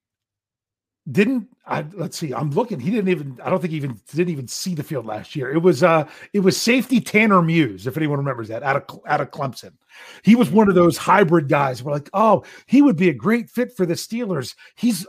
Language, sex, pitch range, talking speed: English, male, 150-215 Hz, 230 wpm